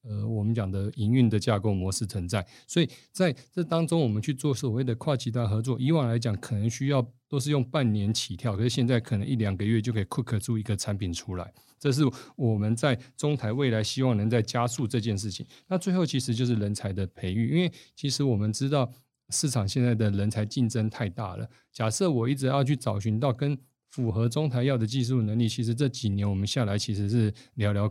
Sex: male